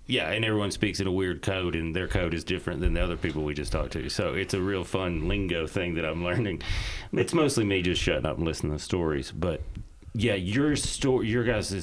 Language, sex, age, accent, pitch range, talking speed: English, male, 30-49, American, 75-95 Hz, 240 wpm